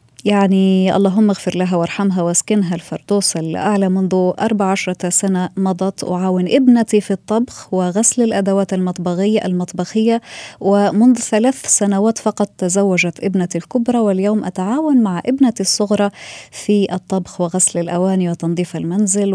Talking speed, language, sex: 120 wpm, Arabic, female